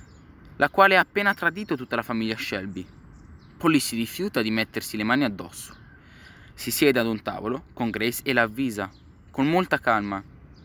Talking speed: 170 wpm